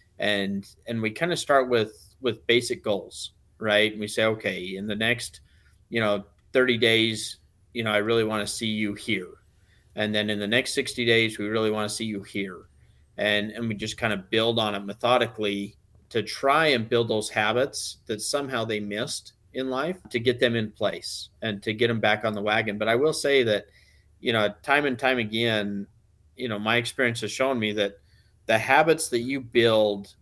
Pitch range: 105-115 Hz